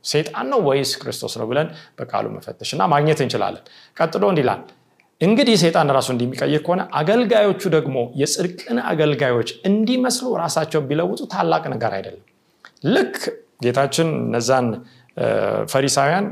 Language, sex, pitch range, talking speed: Amharic, male, 130-180 Hz, 110 wpm